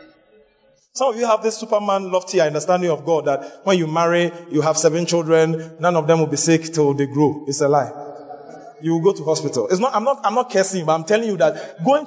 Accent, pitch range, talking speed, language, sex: Nigerian, 145-220 Hz, 240 wpm, English, male